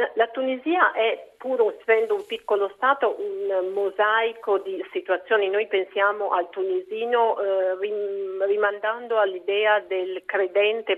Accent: native